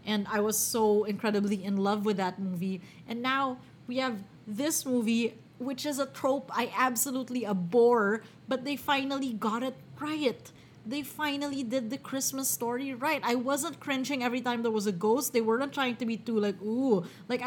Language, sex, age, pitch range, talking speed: English, female, 20-39, 195-250 Hz, 185 wpm